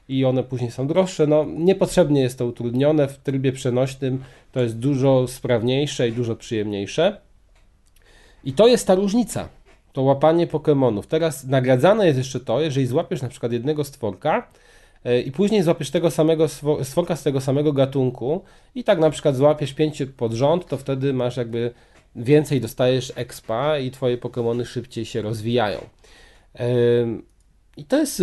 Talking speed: 155 wpm